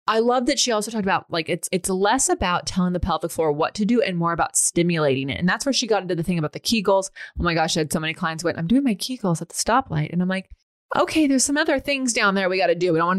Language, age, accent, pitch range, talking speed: English, 20-39, American, 165-215 Hz, 315 wpm